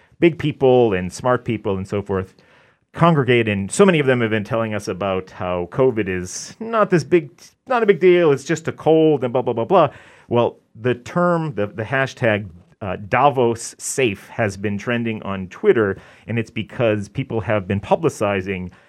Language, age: English, 30-49